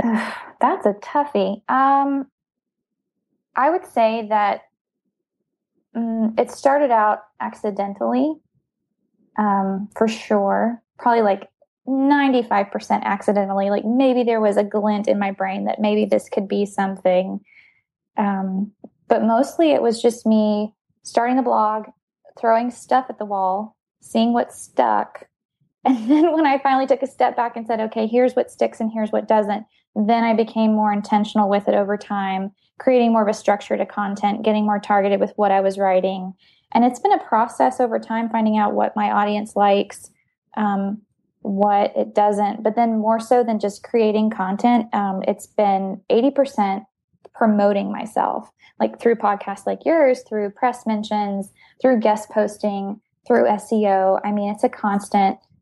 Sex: female